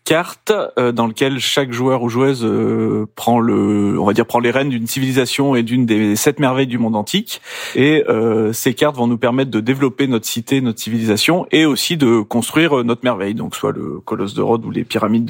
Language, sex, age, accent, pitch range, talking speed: French, male, 30-49, French, 115-140 Hz, 210 wpm